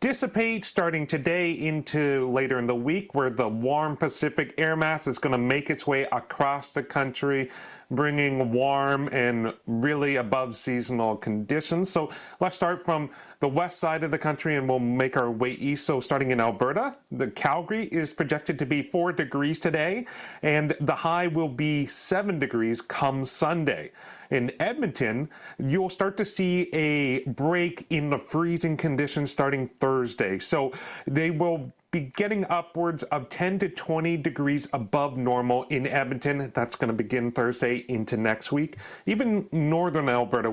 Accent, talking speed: American, 160 wpm